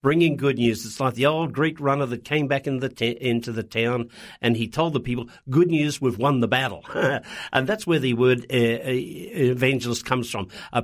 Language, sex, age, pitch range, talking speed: English, male, 50-69, 115-145 Hz, 200 wpm